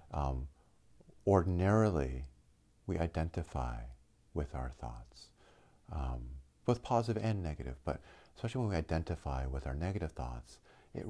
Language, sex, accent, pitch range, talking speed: English, male, American, 65-85 Hz, 120 wpm